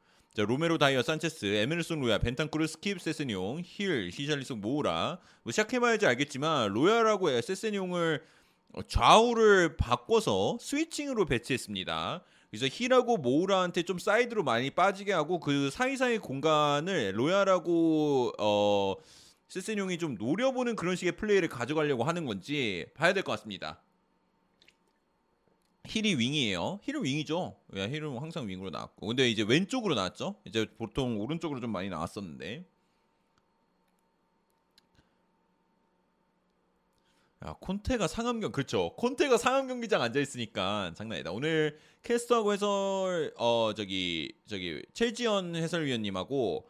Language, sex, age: Korean, male, 30-49